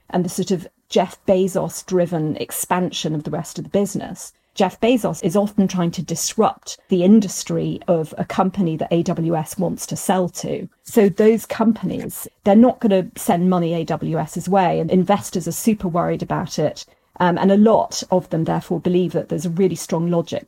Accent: British